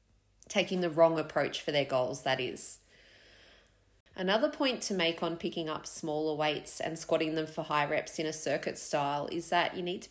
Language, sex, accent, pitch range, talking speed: English, female, Australian, 155-185 Hz, 195 wpm